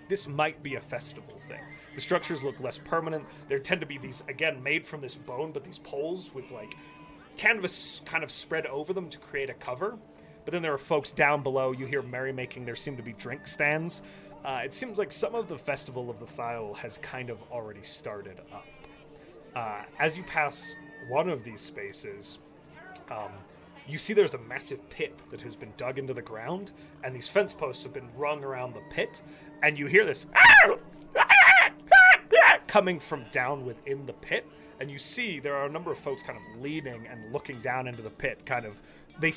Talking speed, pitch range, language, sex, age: 205 wpm, 125-155 Hz, English, male, 30-49